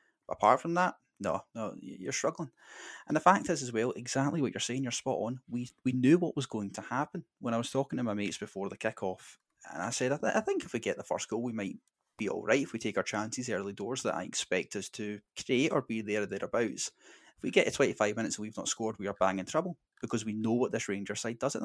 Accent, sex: British, male